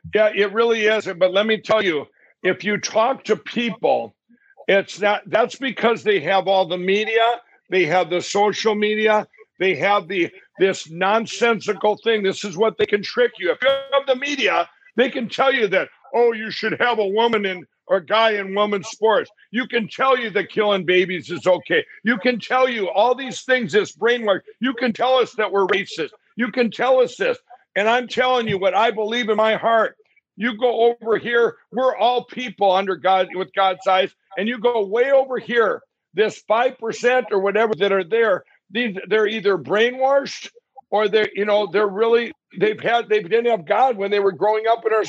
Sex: male